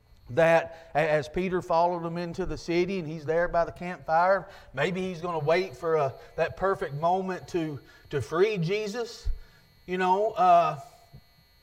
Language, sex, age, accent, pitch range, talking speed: English, male, 40-59, American, 165-215 Hz, 160 wpm